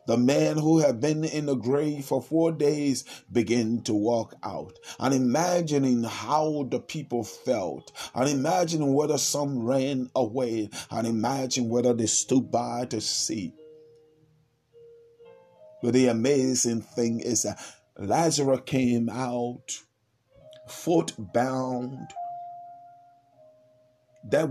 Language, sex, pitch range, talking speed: English, male, 120-145 Hz, 115 wpm